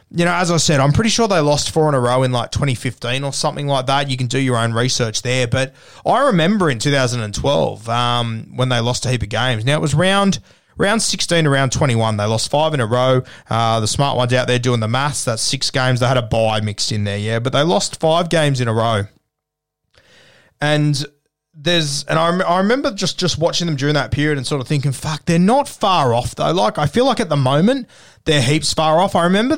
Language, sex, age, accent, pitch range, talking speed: English, male, 20-39, Australian, 120-150 Hz, 240 wpm